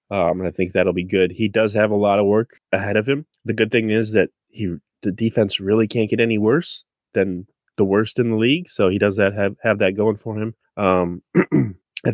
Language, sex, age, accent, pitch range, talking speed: English, male, 20-39, American, 90-110 Hz, 235 wpm